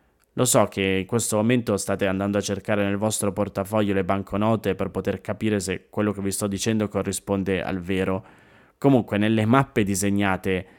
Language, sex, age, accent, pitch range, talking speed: Italian, male, 20-39, native, 100-120 Hz, 170 wpm